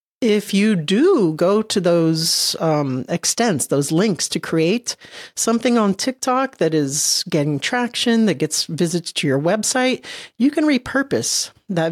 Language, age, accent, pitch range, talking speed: English, 40-59, American, 155-210 Hz, 145 wpm